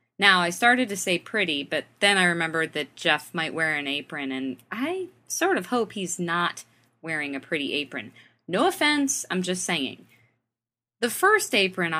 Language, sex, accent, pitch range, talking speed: English, female, American, 150-240 Hz, 175 wpm